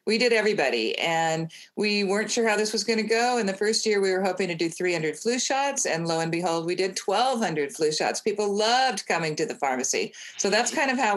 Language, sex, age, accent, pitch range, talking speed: English, female, 40-59, American, 165-215 Hz, 235 wpm